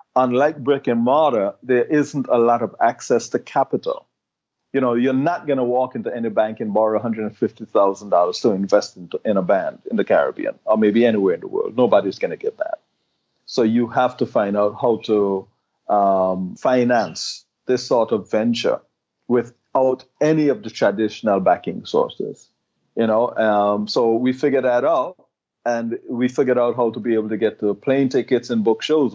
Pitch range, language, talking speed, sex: 110-135 Hz, English, 185 wpm, male